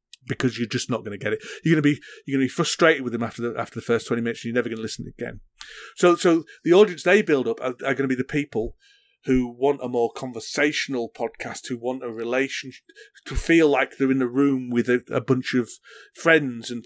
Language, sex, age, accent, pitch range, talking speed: English, male, 40-59, British, 120-150 Hz, 260 wpm